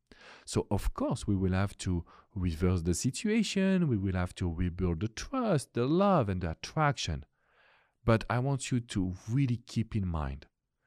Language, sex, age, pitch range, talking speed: English, male, 40-59, 90-120 Hz, 170 wpm